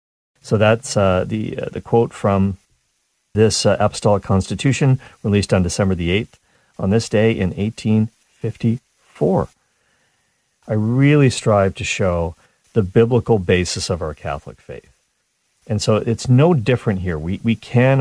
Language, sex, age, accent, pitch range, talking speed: English, male, 50-69, American, 95-125 Hz, 145 wpm